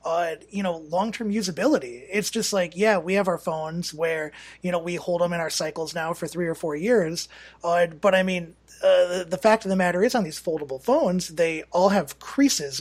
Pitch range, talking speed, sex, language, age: 165-210 Hz, 225 wpm, male, English, 30-49